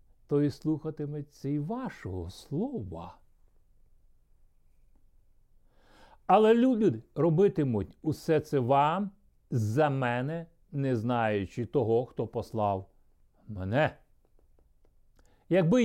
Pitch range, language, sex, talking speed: 115-170 Hz, Ukrainian, male, 80 wpm